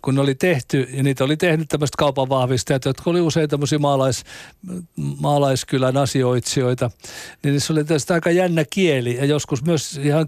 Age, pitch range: 60-79, 140-175 Hz